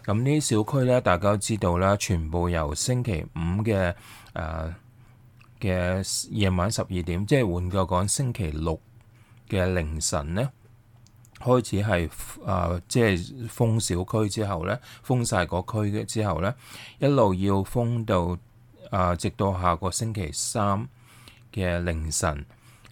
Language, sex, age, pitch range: English, male, 20-39, 90-115 Hz